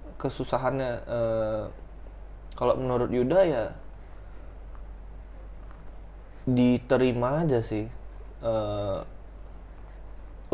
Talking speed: 55 wpm